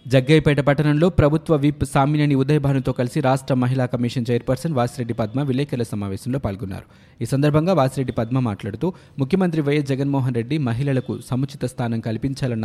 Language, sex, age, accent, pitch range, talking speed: Telugu, male, 20-39, native, 115-140 Hz, 135 wpm